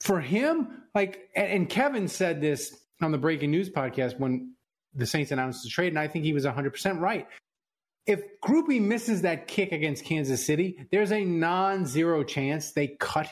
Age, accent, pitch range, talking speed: 30-49, American, 140-210 Hz, 175 wpm